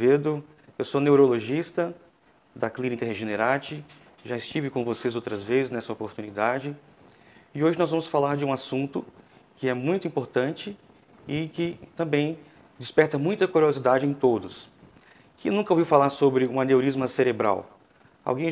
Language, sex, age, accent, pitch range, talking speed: Portuguese, male, 40-59, Brazilian, 130-155 Hz, 140 wpm